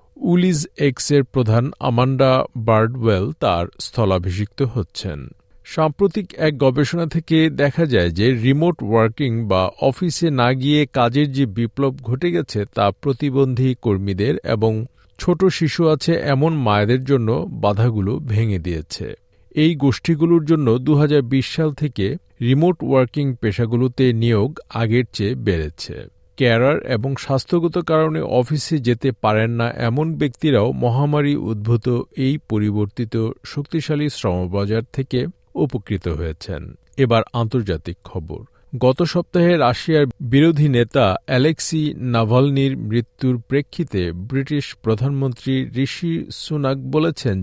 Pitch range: 110-145 Hz